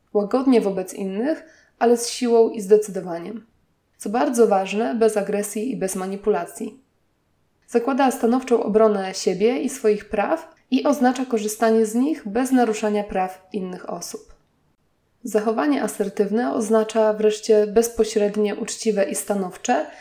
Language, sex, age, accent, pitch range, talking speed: Polish, female, 20-39, native, 200-235 Hz, 125 wpm